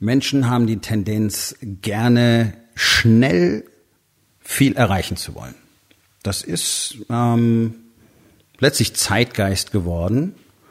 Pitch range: 95-120 Hz